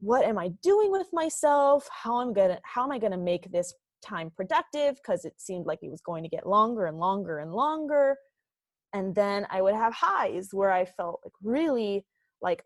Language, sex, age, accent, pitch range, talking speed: English, female, 20-39, American, 185-240 Hz, 215 wpm